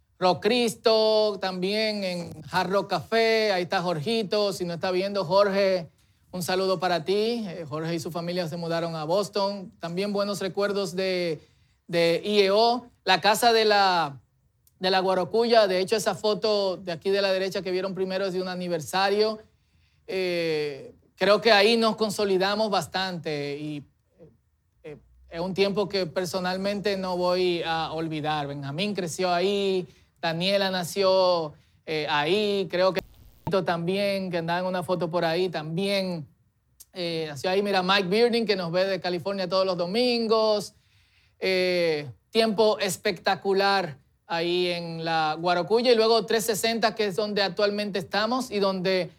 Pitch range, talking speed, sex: 170-200 Hz, 150 wpm, male